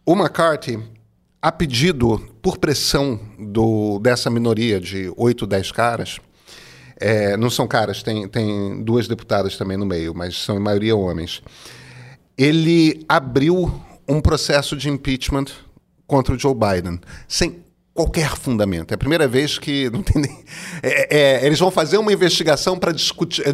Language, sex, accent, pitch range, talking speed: Portuguese, male, Brazilian, 115-165 Hz, 150 wpm